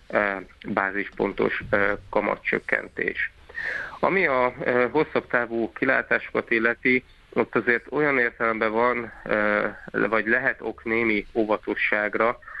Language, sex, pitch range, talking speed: Hungarian, male, 105-120 Hz, 85 wpm